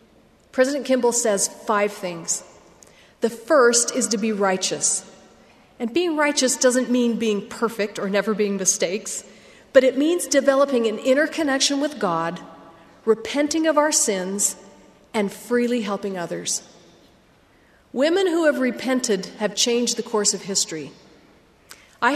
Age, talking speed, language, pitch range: 40-59, 135 wpm, English, 190-240 Hz